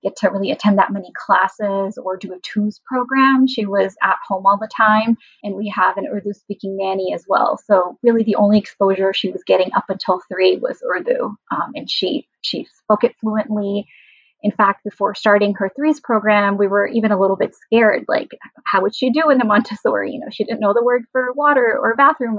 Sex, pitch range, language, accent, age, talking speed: female, 195-235 Hz, English, American, 20-39, 215 wpm